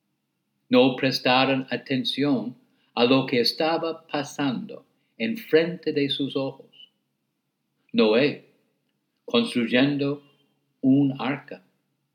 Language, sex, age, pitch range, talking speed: English, male, 60-79, 130-200 Hz, 85 wpm